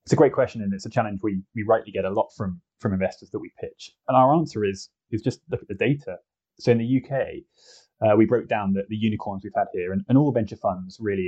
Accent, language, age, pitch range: British, English, 20-39, 95-125 Hz